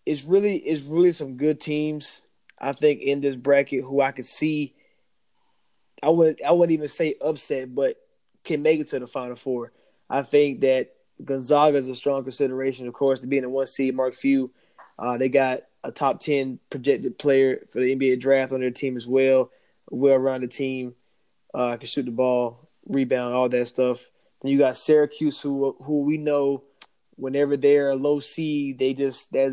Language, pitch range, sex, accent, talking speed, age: English, 130-150 Hz, male, American, 190 wpm, 20-39